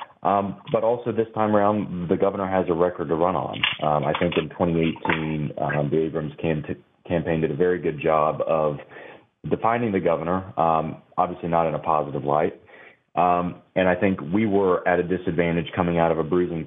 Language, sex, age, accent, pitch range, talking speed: English, male, 30-49, American, 80-90 Hz, 190 wpm